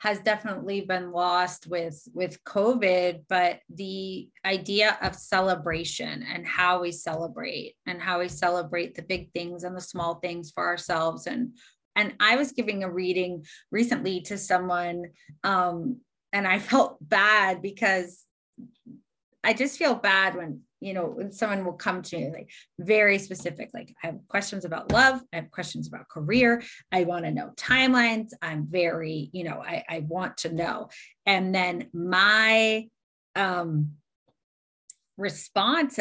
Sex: female